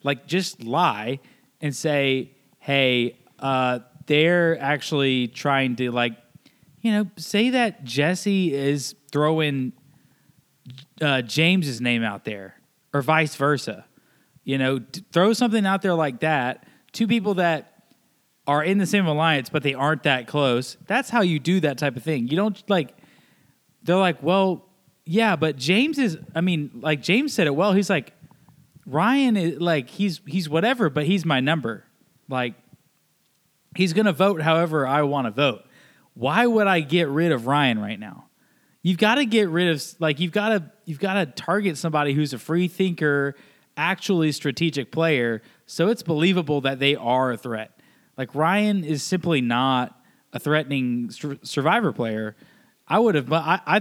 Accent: American